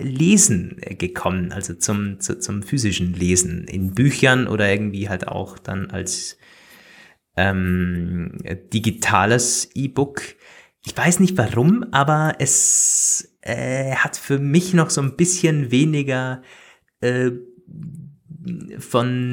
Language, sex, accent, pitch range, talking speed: German, male, German, 105-140 Hz, 110 wpm